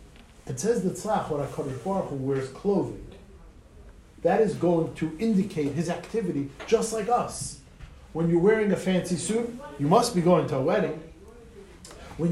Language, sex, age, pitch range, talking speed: English, male, 50-69, 160-195 Hz, 165 wpm